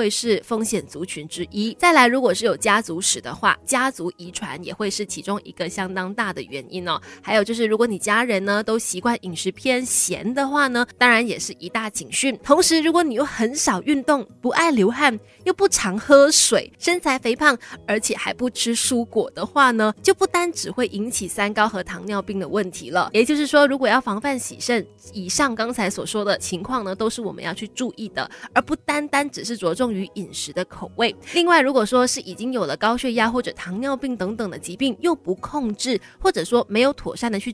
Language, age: Chinese, 20-39